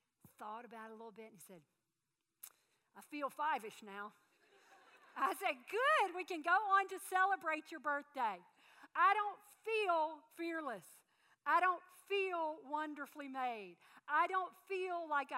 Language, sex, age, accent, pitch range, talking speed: English, female, 50-69, American, 225-335 Hz, 140 wpm